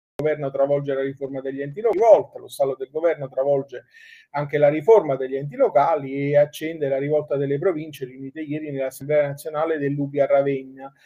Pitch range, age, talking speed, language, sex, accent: 140-175 Hz, 30-49, 180 wpm, Italian, male, native